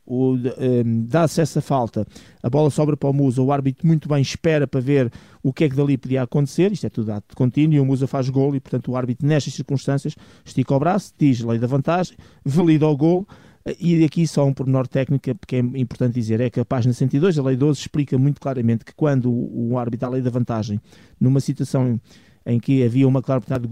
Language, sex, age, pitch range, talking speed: Portuguese, male, 20-39, 125-140 Hz, 225 wpm